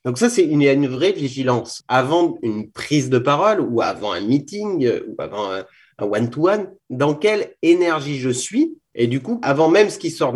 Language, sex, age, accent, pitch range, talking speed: French, male, 30-49, French, 120-155 Hz, 185 wpm